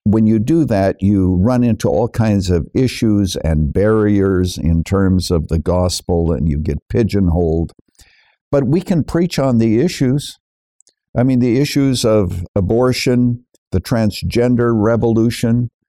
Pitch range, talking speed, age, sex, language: 95-125 Hz, 145 wpm, 60-79, male, English